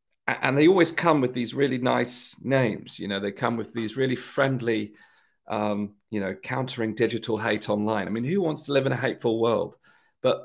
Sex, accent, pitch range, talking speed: male, British, 110-135 Hz, 200 wpm